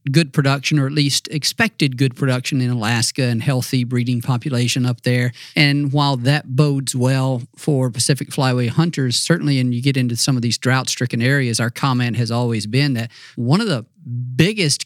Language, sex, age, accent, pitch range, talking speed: English, male, 50-69, American, 125-145 Hz, 180 wpm